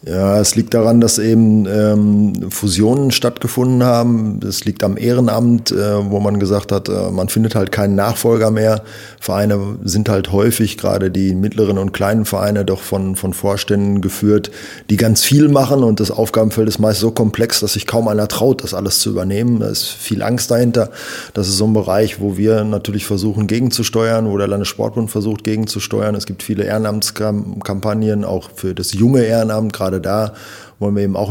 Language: German